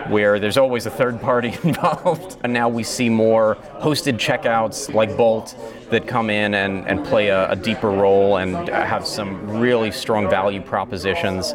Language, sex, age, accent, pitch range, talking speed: English, male, 30-49, American, 100-120 Hz, 170 wpm